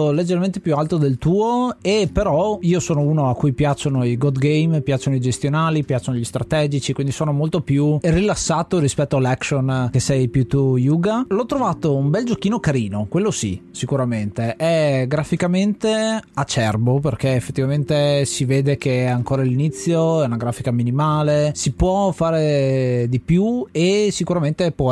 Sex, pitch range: male, 135-170 Hz